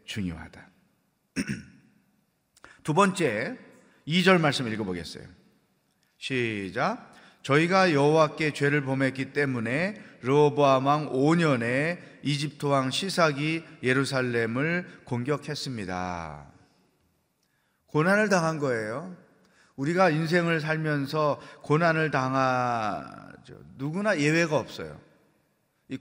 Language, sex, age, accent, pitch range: Korean, male, 30-49, native, 130-165 Hz